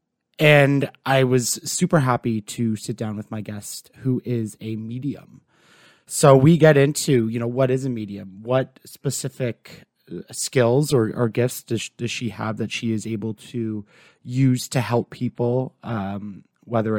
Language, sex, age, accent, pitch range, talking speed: English, male, 30-49, American, 110-130 Hz, 165 wpm